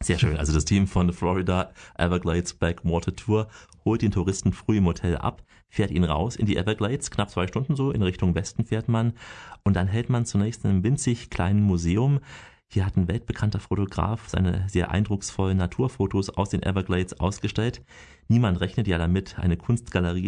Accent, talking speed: German, 180 wpm